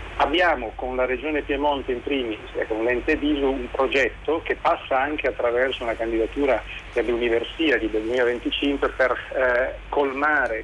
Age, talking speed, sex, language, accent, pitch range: 40-59, 145 wpm, male, Italian, native, 115-150 Hz